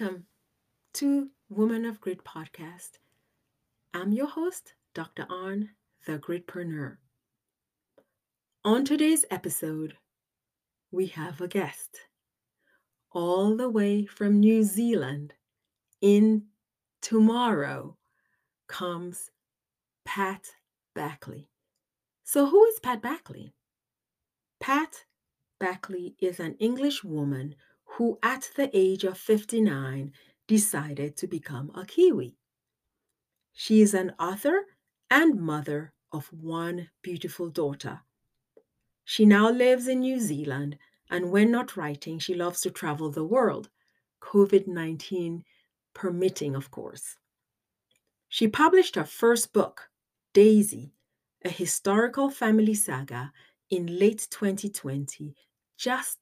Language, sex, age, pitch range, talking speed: English, female, 40-59, 160-225 Hz, 105 wpm